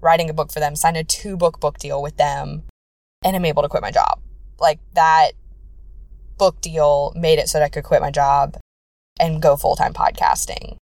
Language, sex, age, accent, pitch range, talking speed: English, female, 20-39, American, 160-220 Hz, 210 wpm